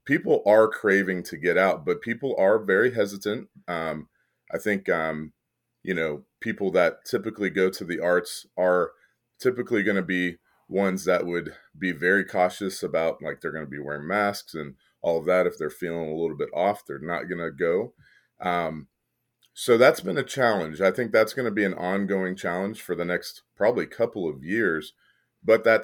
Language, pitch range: English, 85-100 Hz